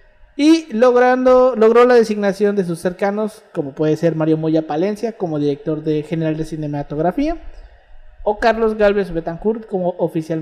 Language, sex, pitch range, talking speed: Spanish, male, 150-205 Hz, 150 wpm